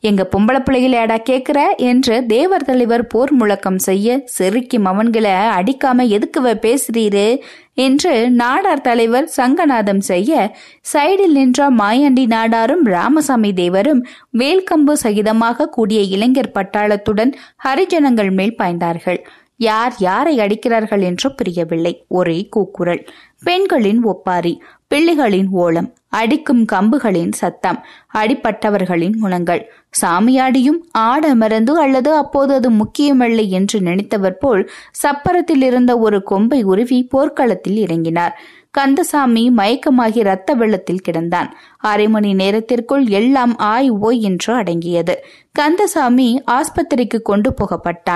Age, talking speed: 20-39, 100 wpm